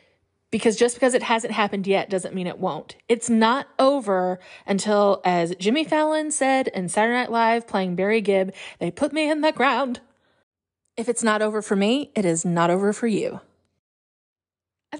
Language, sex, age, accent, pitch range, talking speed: English, female, 30-49, American, 190-250 Hz, 180 wpm